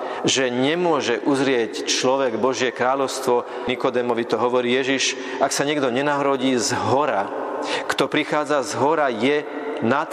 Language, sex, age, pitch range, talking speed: Slovak, male, 40-59, 130-165 Hz, 130 wpm